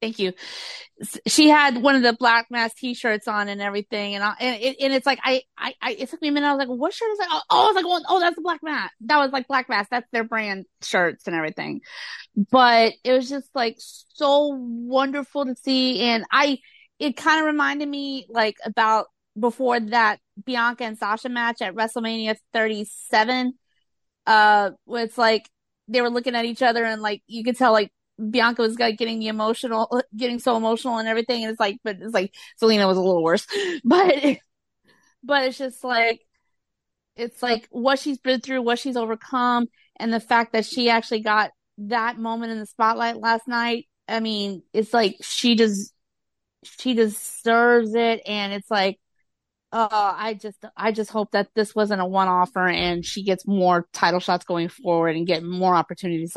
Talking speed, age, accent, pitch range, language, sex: 195 wpm, 30-49, American, 210-255 Hz, English, female